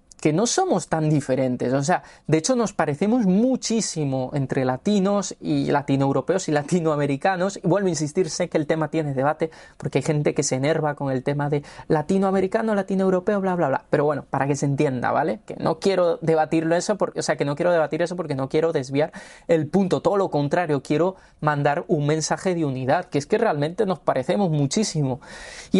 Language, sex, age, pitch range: Spanish, male, 20-39, 145-185 Hz